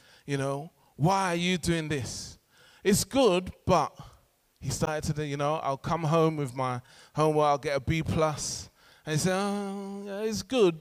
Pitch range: 140-185 Hz